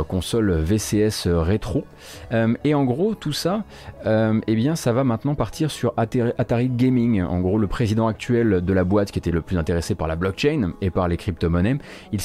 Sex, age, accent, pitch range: male, 30-49, French, 95-125 Hz